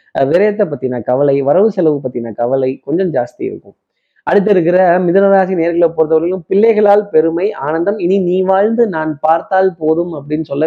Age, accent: 20-39, native